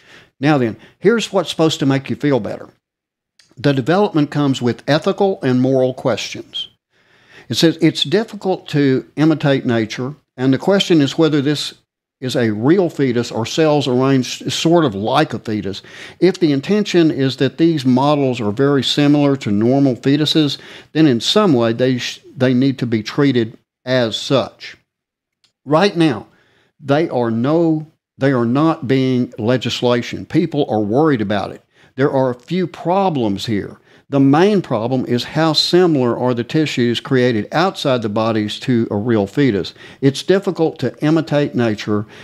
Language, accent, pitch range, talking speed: English, American, 120-155 Hz, 160 wpm